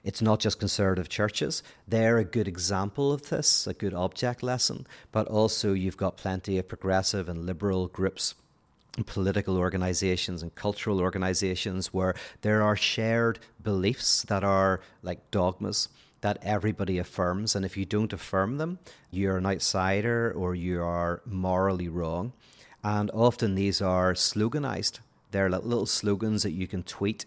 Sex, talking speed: male, 155 wpm